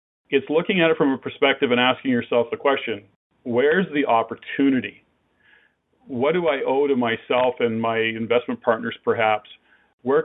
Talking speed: 160 wpm